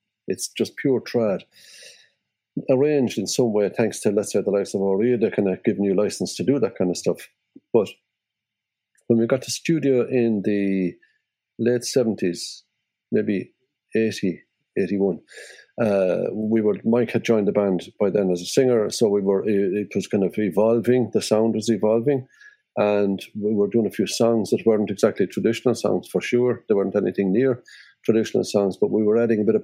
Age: 50-69